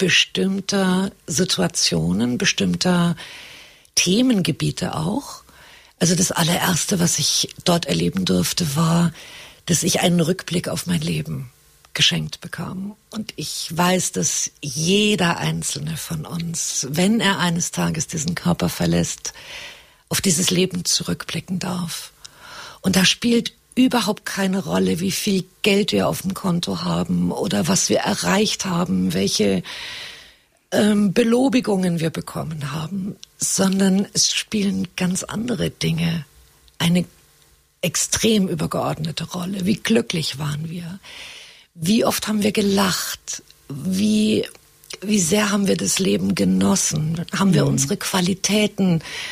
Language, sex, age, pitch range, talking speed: German, female, 50-69, 165-200 Hz, 120 wpm